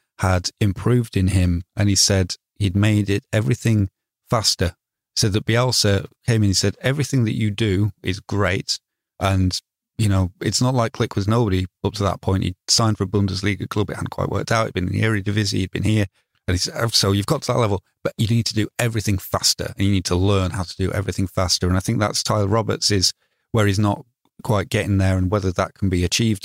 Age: 30-49